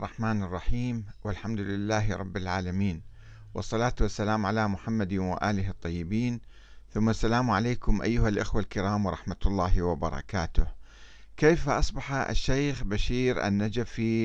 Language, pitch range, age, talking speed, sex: Arabic, 100-125 Hz, 50-69, 110 wpm, male